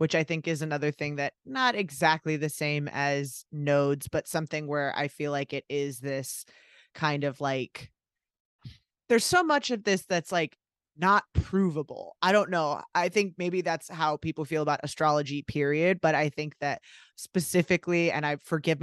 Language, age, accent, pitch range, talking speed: English, 20-39, American, 150-175 Hz, 175 wpm